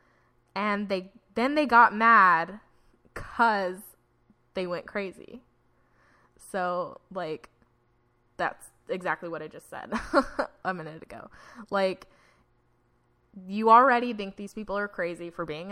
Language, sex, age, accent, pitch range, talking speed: English, female, 20-39, American, 175-220 Hz, 120 wpm